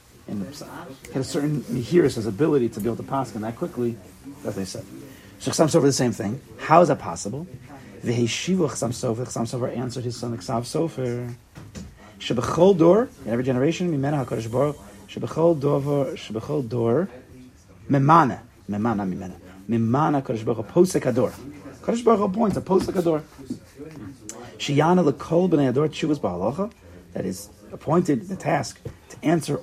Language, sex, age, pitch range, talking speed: English, male, 40-59, 115-155 Hz, 150 wpm